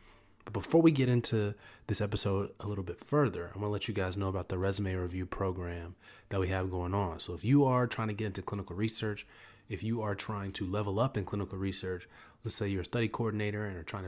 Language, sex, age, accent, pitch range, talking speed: English, male, 30-49, American, 95-115 Hz, 245 wpm